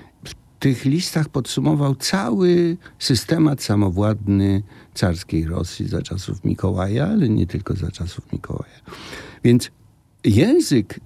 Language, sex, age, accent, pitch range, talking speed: Polish, male, 60-79, native, 100-150 Hz, 105 wpm